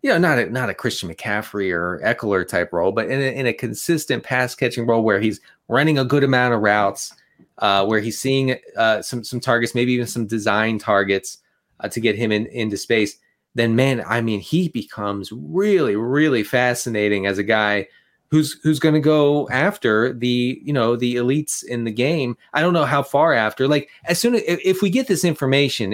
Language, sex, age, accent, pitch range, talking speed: English, male, 30-49, American, 115-145 Hz, 210 wpm